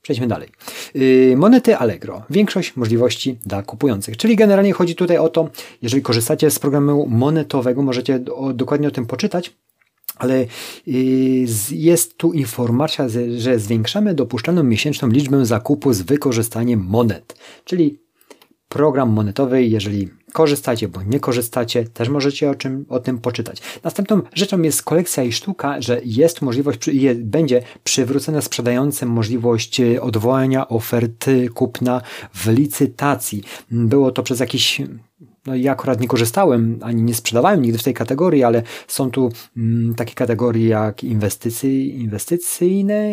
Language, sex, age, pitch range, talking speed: Polish, male, 40-59, 115-140 Hz, 130 wpm